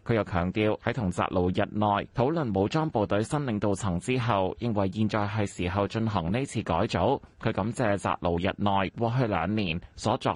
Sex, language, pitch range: male, Chinese, 95-125 Hz